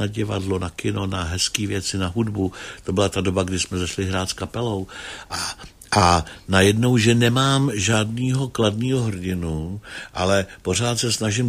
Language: Czech